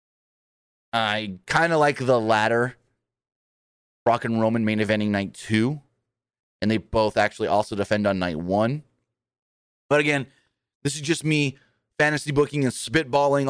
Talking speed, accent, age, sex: 140 wpm, American, 30-49, male